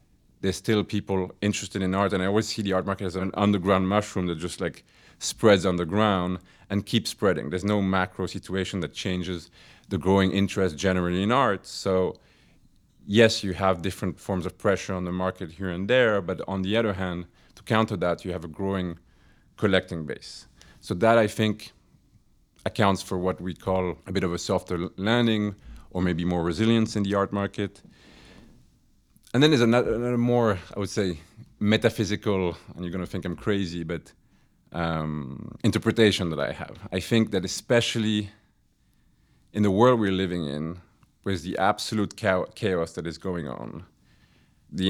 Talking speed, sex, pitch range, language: 180 wpm, male, 90-105 Hz, English